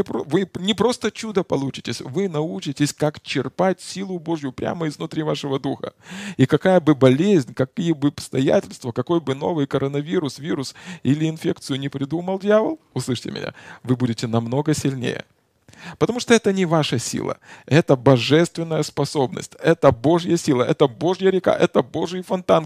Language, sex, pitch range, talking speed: Russian, male, 130-175 Hz, 150 wpm